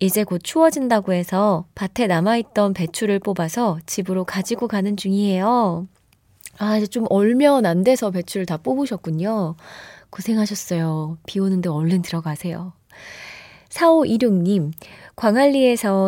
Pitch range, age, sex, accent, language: 175-255 Hz, 20-39, female, native, Korean